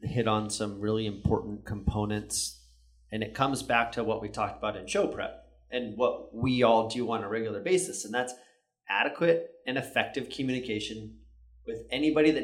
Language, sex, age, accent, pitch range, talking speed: English, male, 30-49, American, 110-130 Hz, 175 wpm